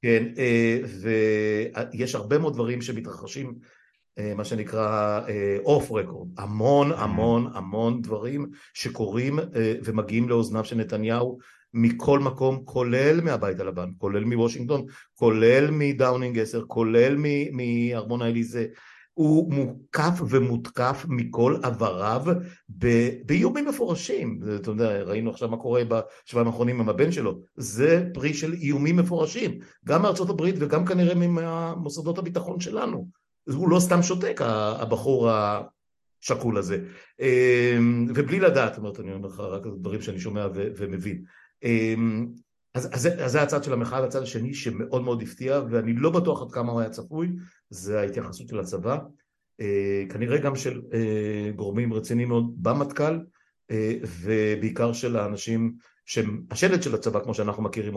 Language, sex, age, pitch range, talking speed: Hebrew, male, 60-79, 110-140 Hz, 125 wpm